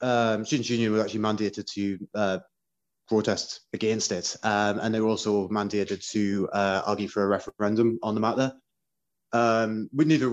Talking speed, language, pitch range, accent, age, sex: 175 wpm, English, 115-140 Hz, British, 20-39, male